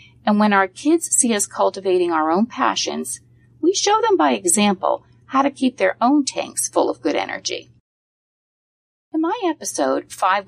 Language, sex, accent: English, female, American